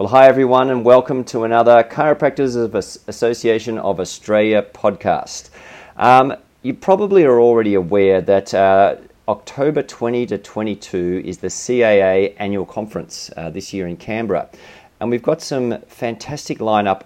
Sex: male